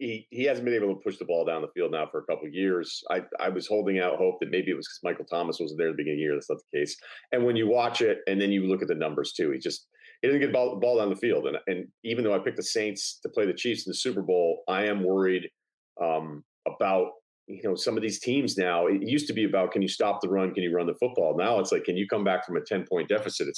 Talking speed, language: 315 wpm, English